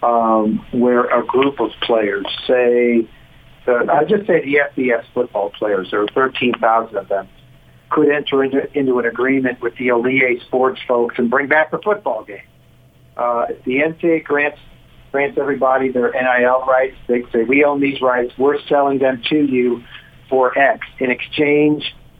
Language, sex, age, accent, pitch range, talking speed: English, male, 50-69, American, 125-150 Hz, 165 wpm